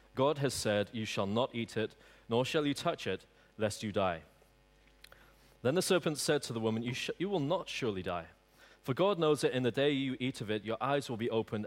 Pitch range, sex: 105-140 Hz, male